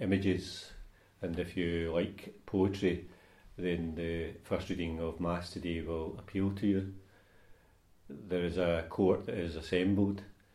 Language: English